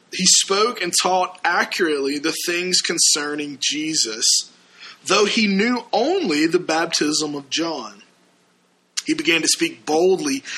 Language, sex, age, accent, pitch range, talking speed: English, male, 20-39, American, 150-225 Hz, 125 wpm